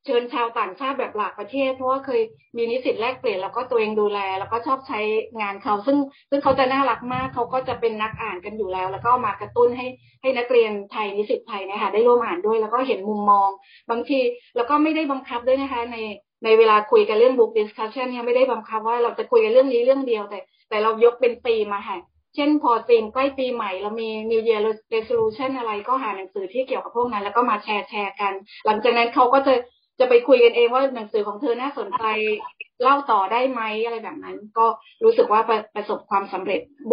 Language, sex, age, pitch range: Thai, female, 20-39, 215-270 Hz